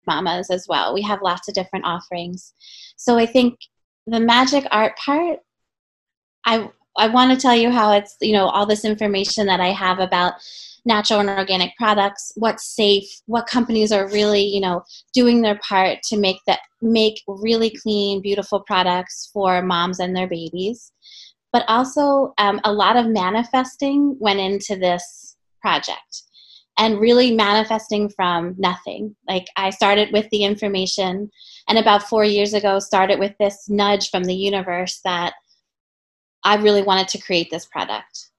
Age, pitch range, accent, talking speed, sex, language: 20-39, 190-225 Hz, American, 160 wpm, female, English